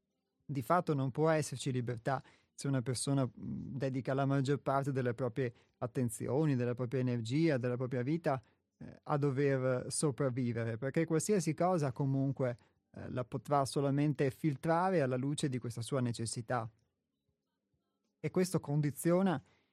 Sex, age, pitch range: male, 30-49, 125-145 Hz